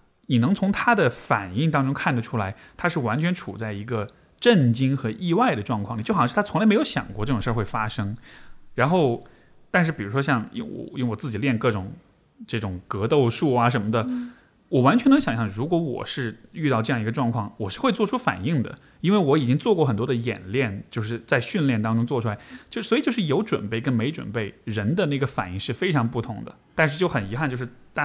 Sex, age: male, 20-39